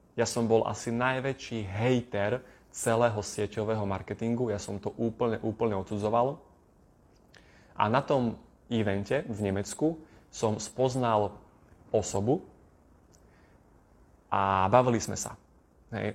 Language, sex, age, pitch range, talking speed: Slovak, male, 20-39, 105-125 Hz, 110 wpm